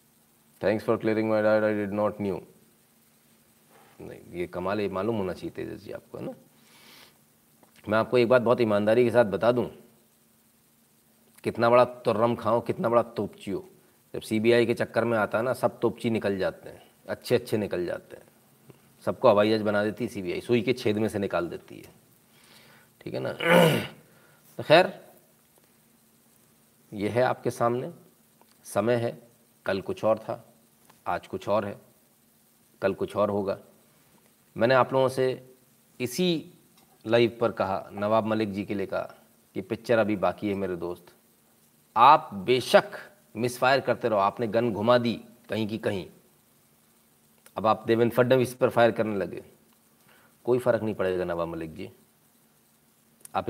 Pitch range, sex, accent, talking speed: 105-120 Hz, male, native, 160 wpm